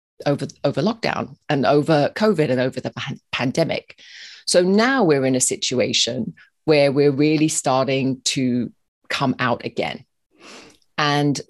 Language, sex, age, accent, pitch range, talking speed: English, female, 30-49, British, 145-185 Hz, 130 wpm